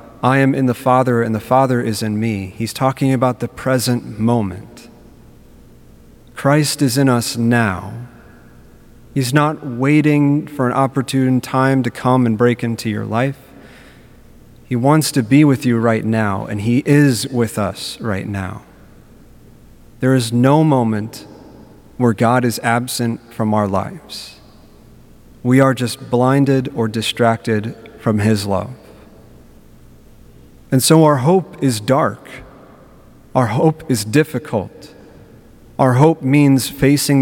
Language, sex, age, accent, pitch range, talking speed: English, male, 30-49, American, 110-135 Hz, 135 wpm